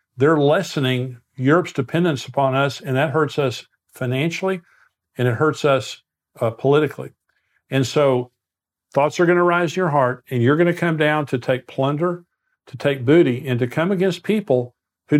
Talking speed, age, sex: 180 wpm, 50-69, male